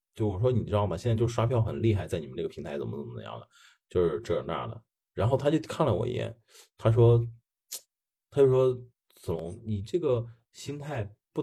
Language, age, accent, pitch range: Chinese, 30-49, native, 105-130 Hz